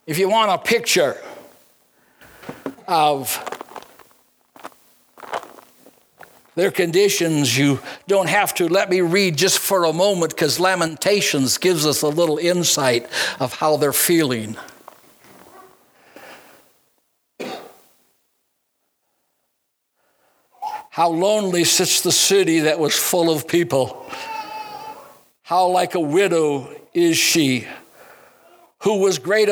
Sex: male